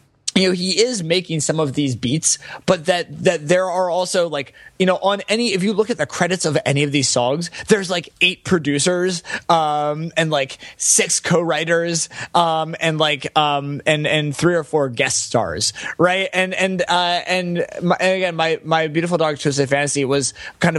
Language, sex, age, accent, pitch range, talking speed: English, male, 20-39, American, 140-175 Hz, 195 wpm